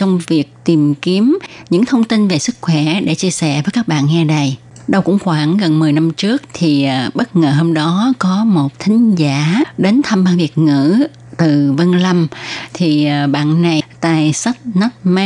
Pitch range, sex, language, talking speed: 155-200 Hz, female, Vietnamese, 195 wpm